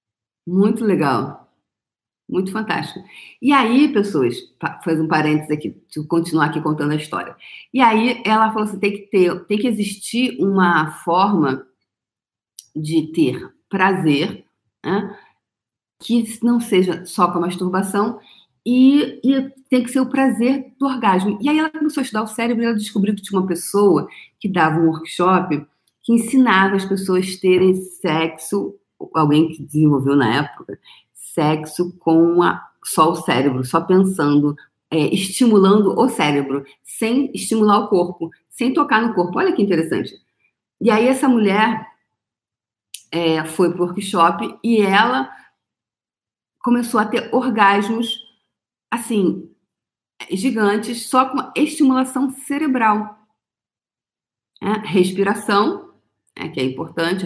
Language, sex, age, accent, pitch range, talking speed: Portuguese, female, 40-59, Brazilian, 160-230 Hz, 135 wpm